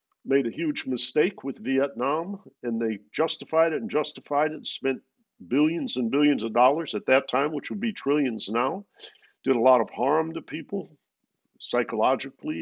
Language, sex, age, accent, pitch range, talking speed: English, male, 50-69, American, 120-180 Hz, 165 wpm